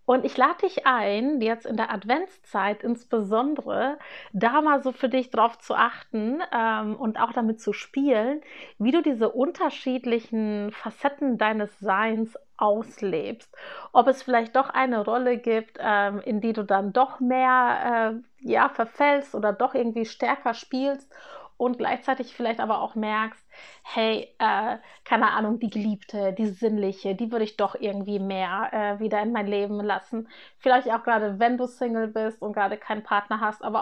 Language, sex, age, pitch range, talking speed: German, female, 30-49, 210-255 Hz, 165 wpm